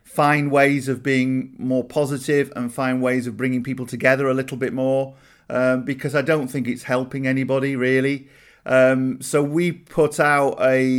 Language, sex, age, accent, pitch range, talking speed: English, male, 40-59, British, 125-150 Hz, 175 wpm